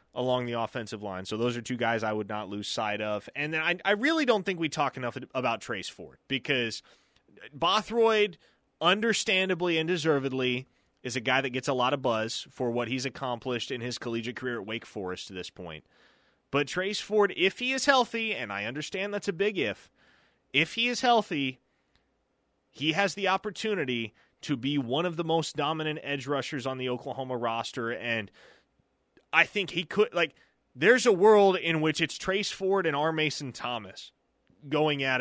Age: 30-49